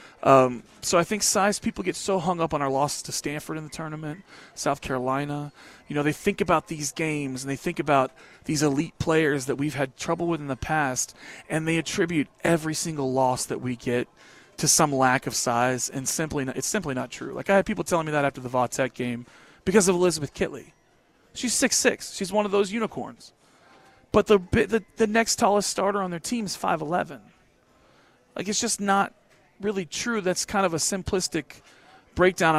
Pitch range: 130-180 Hz